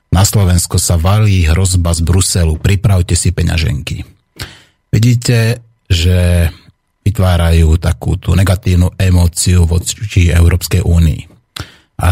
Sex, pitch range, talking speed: male, 85-105 Hz, 100 wpm